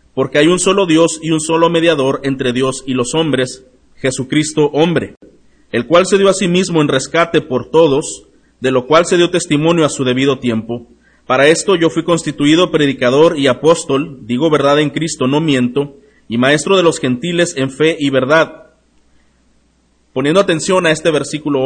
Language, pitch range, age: Spanish, 135-170 Hz, 40-59